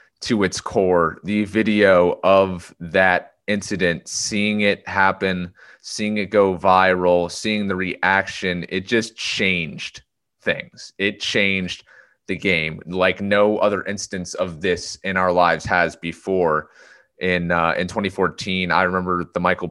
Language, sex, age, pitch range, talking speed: English, male, 30-49, 90-105 Hz, 135 wpm